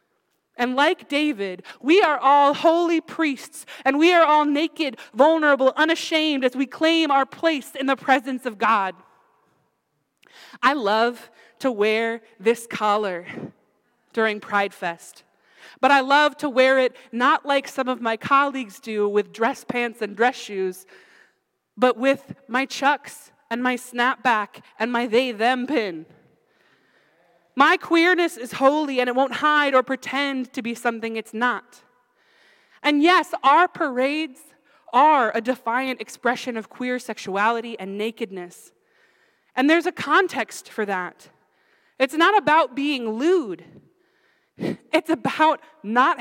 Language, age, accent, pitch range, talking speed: English, 20-39, American, 225-295 Hz, 140 wpm